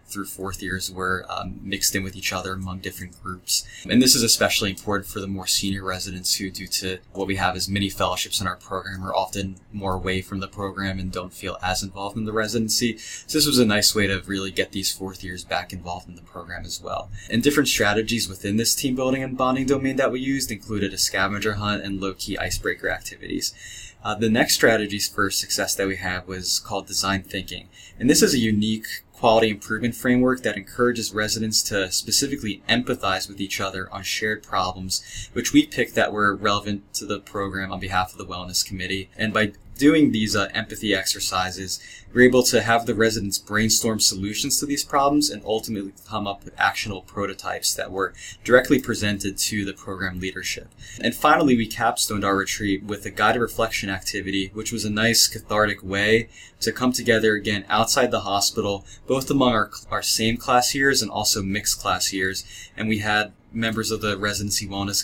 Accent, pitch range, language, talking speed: American, 95-110 Hz, English, 200 wpm